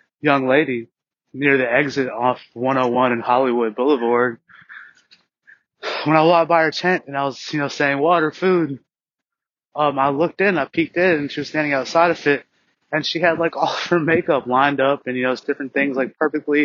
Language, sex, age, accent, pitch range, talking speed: English, male, 20-39, American, 130-160 Hz, 210 wpm